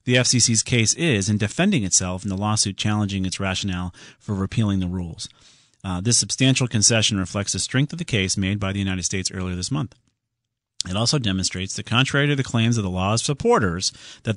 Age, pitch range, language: 40-59, 100-140 Hz, English